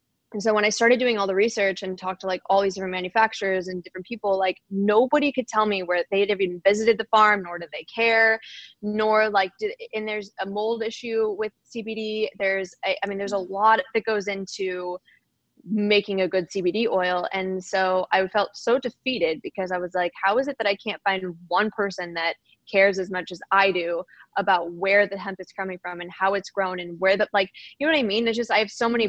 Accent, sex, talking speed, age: American, female, 230 wpm, 20-39